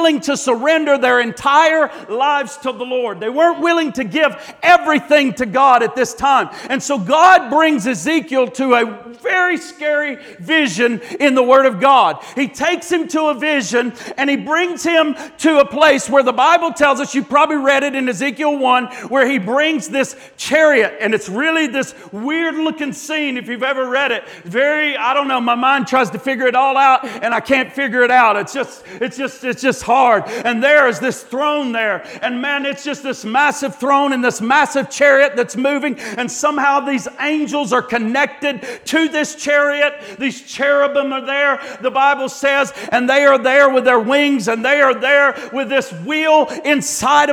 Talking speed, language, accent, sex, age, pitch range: 190 wpm, English, American, male, 50-69, 255-295 Hz